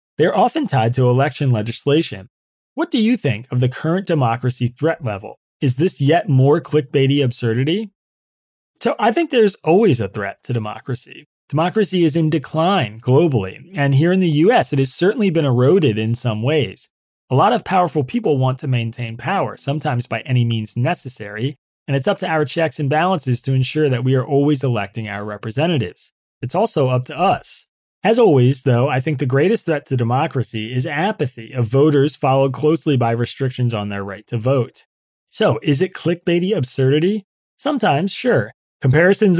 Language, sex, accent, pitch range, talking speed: English, male, American, 120-160 Hz, 180 wpm